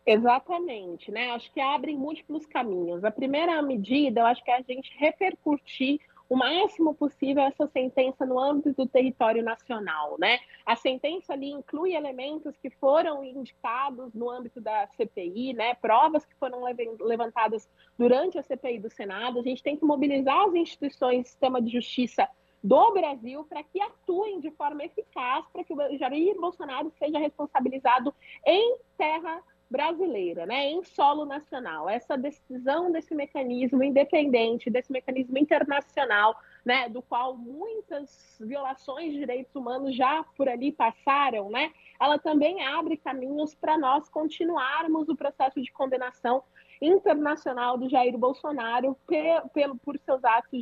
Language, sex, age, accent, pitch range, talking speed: Portuguese, female, 30-49, Brazilian, 250-305 Hz, 145 wpm